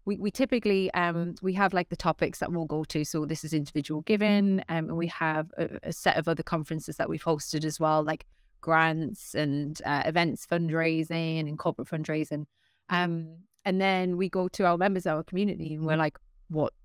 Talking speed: 205 wpm